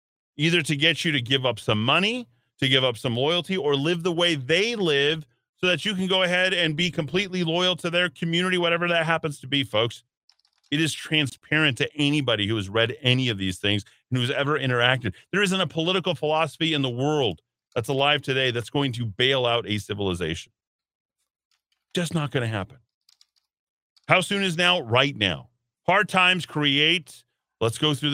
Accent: American